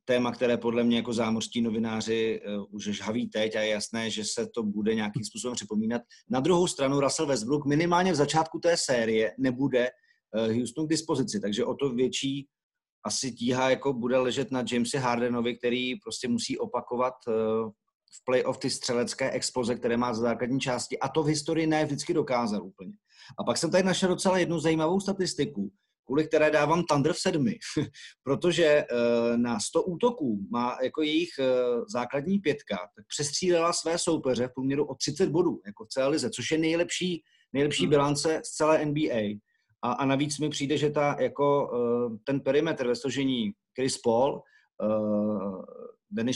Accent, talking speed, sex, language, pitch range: native, 170 wpm, male, Czech, 120-155 Hz